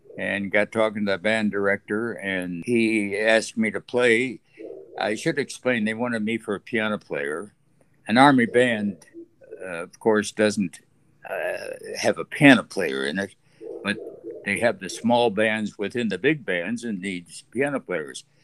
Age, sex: 60-79, male